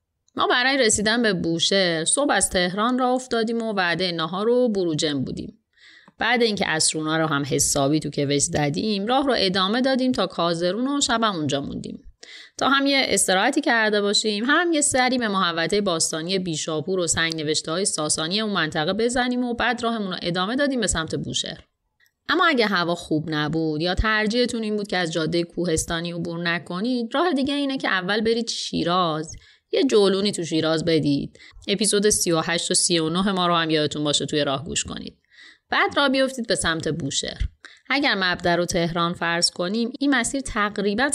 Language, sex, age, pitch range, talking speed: Persian, female, 30-49, 165-230 Hz, 175 wpm